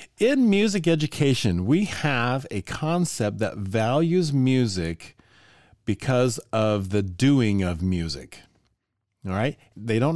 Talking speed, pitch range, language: 120 wpm, 100-145 Hz, English